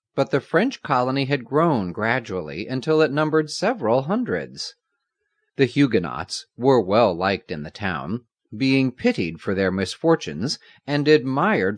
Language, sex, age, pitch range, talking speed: English, male, 40-59, 95-155 Hz, 140 wpm